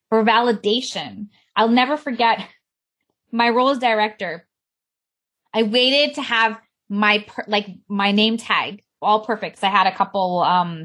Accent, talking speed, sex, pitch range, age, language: American, 145 wpm, female, 200-260 Hz, 20-39, English